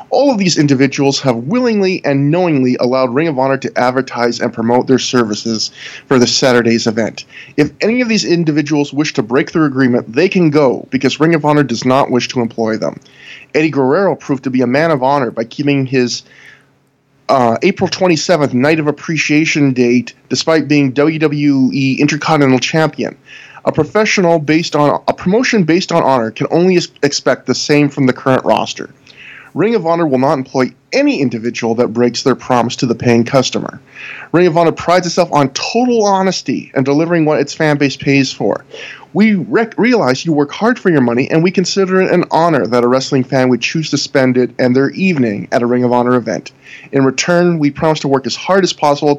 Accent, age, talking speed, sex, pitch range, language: American, 20-39, 195 wpm, male, 130-165 Hz, English